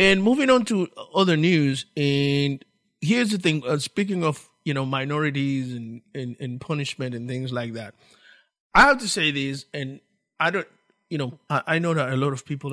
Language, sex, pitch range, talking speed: English, male, 130-165 Hz, 200 wpm